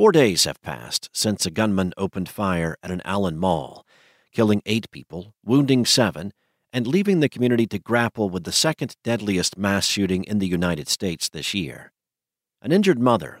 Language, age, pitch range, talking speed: English, 50-69, 95-120 Hz, 175 wpm